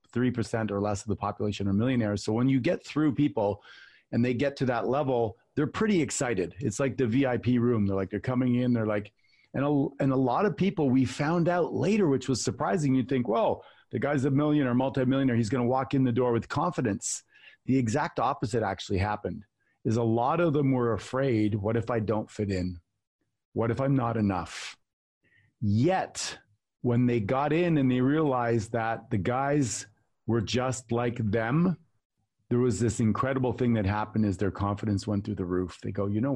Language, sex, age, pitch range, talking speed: English, male, 40-59, 105-135 Hz, 200 wpm